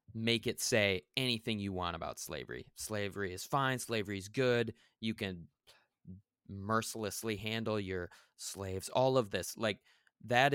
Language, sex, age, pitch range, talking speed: English, male, 20-39, 95-120 Hz, 140 wpm